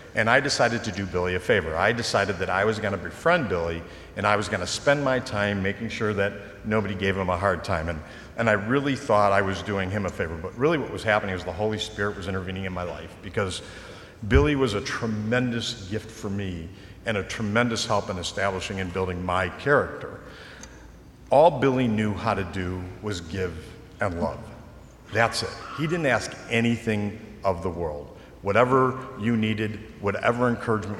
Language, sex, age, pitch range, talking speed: English, male, 50-69, 95-115 Hz, 195 wpm